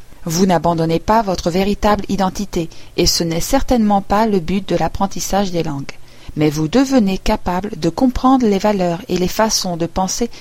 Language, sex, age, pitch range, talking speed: French, female, 40-59, 165-220 Hz, 175 wpm